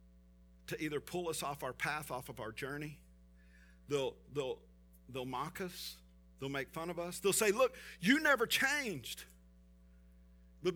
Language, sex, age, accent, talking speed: English, male, 50-69, American, 150 wpm